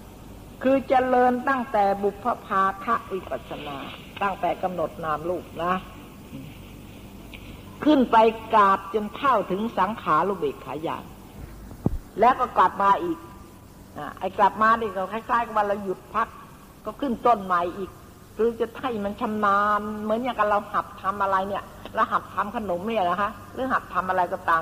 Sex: female